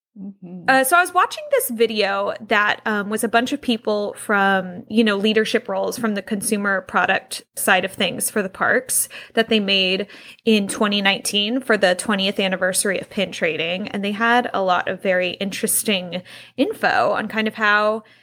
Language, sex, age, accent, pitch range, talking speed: English, female, 10-29, American, 205-255 Hz, 180 wpm